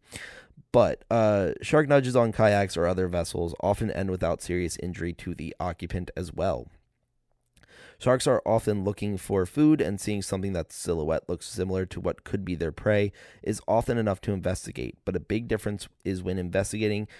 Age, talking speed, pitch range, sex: 20-39, 175 wpm, 85-105 Hz, male